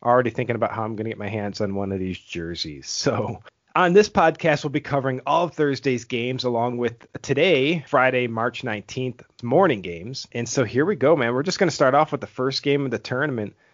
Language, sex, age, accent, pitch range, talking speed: English, male, 30-49, American, 110-140 Hz, 230 wpm